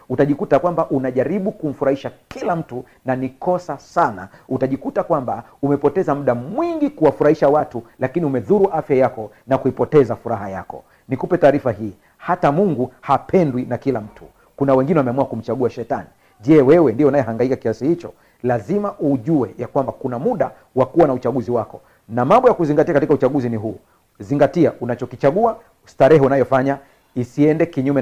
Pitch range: 120-155 Hz